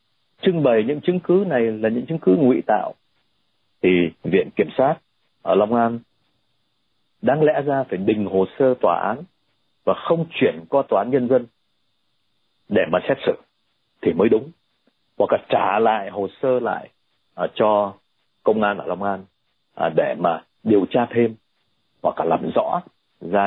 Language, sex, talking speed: Vietnamese, male, 170 wpm